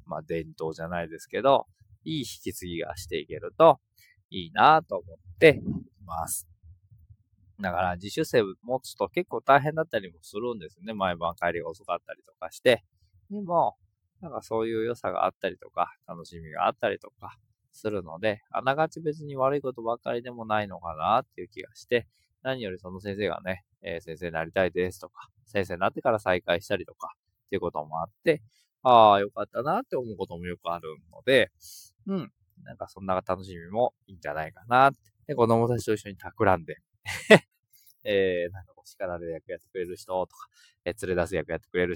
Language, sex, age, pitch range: Japanese, male, 20-39, 90-120 Hz